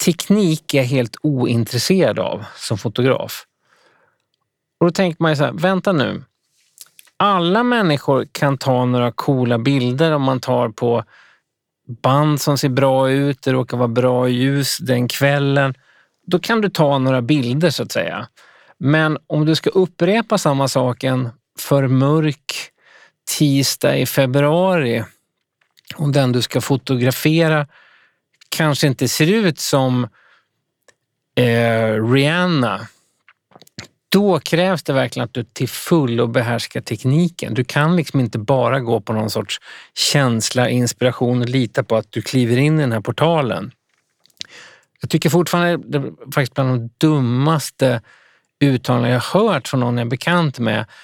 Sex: male